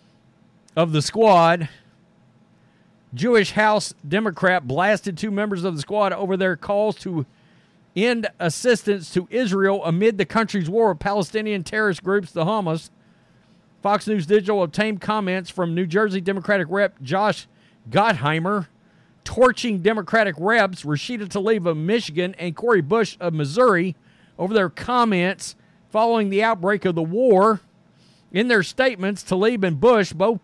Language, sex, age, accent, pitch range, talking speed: English, male, 40-59, American, 175-215 Hz, 140 wpm